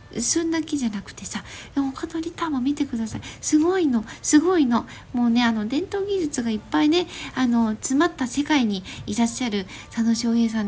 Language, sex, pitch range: Japanese, female, 225-300 Hz